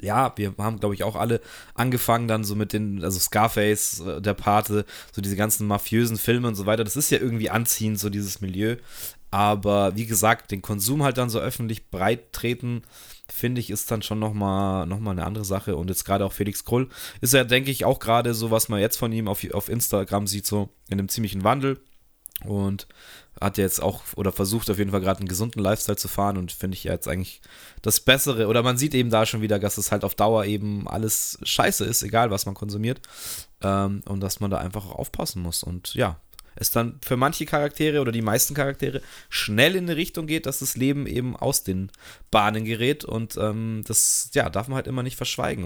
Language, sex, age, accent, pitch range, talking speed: German, male, 20-39, German, 100-120 Hz, 220 wpm